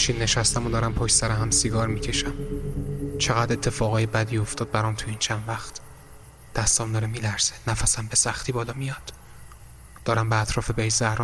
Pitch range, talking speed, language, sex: 115-125 Hz, 165 wpm, Persian, male